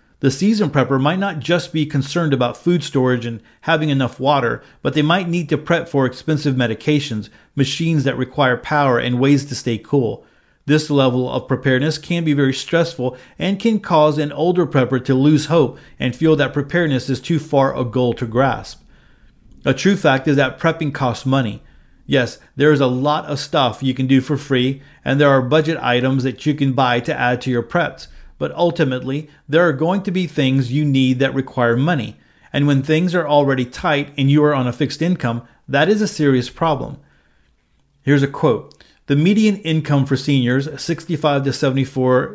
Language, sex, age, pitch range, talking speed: English, male, 40-59, 130-155 Hz, 195 wpm